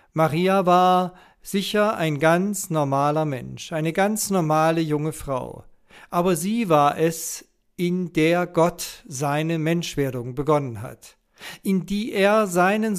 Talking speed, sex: 125 wpm, male